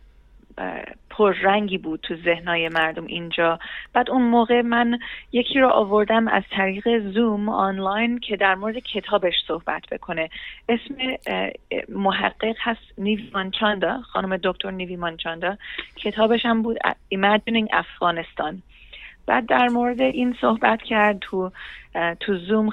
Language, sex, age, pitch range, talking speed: Persian, female, 30-49, 175-220 Hz, 125 wpm